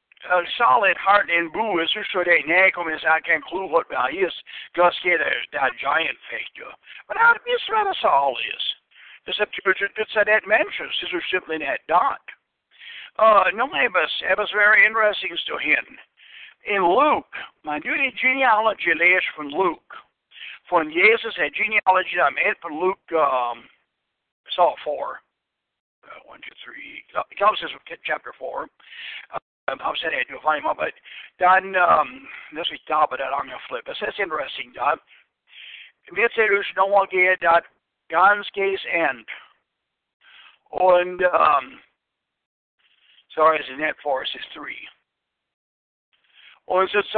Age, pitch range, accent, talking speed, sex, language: 60-79, 170-210 Hz, American, 120 wpm, male, English